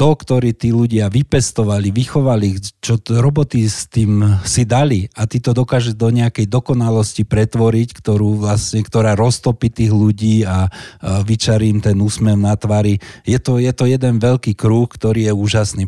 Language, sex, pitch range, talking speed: Slovak, male, 105-120 Hz, 165 wpm